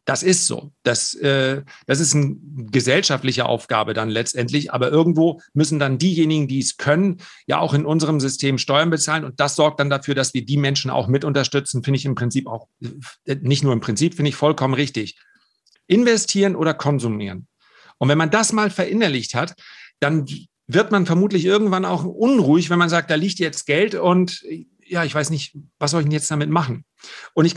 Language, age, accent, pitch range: German, 40-59, German, 135-185 Hz